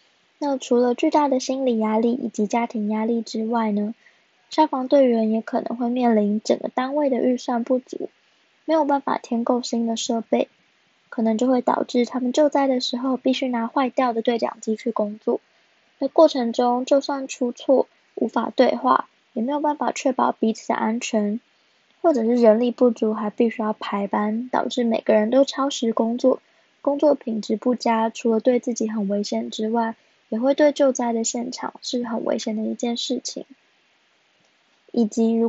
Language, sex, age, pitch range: Chinese, female, 10-29, 225-265 Hz